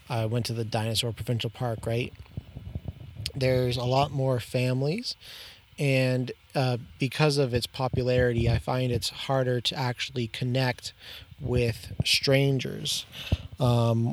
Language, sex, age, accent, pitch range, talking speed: English, male, 30-49, American, 120-135 Hz, 125 wpm